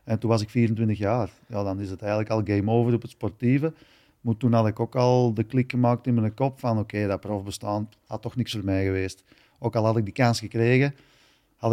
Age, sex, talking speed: 40-59, male, 250 wpm